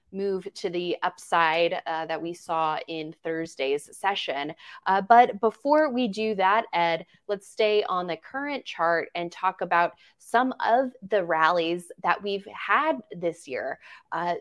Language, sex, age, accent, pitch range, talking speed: English, female, 20-39, American, 170-220 Hz, 155 wpm